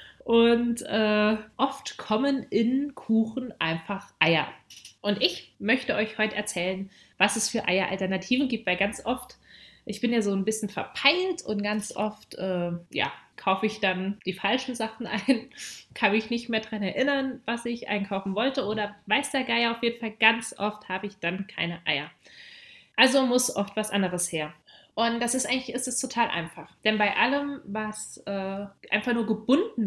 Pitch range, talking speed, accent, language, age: 200-250 Hz, 175 wpm, German, German, 20-39